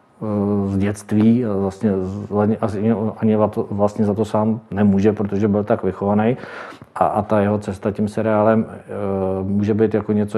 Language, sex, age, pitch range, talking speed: Czech, male, 40-59, 95-110 Hz, 140 wpm